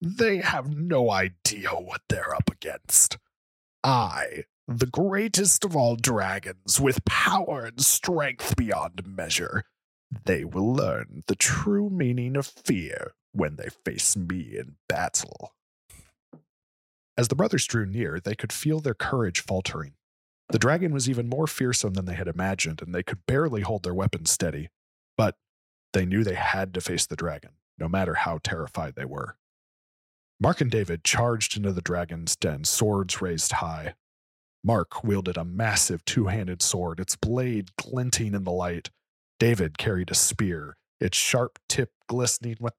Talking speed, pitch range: 155 wpm, 90-125 Hz